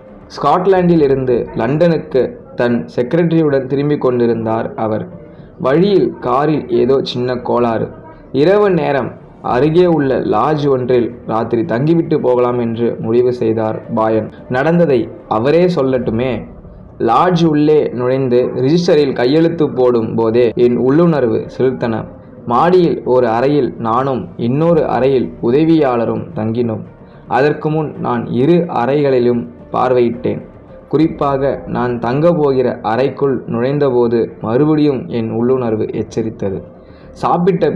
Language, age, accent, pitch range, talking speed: Tamil, 20-39, native, 115-150 Hz, 100 wpm